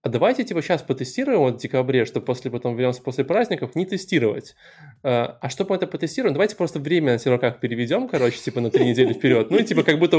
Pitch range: 120-150 Hz